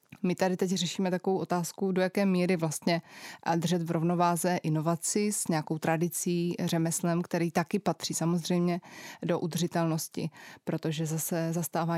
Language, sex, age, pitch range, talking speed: Slovak, female, 20-39, 165-185 Hz, 135 wpm